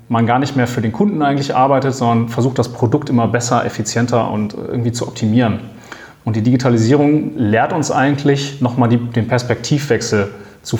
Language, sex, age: German, male, 30-49